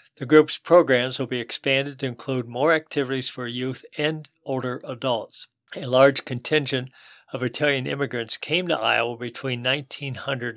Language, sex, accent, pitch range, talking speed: English, male, American, 120-140 Hz, 150 wpm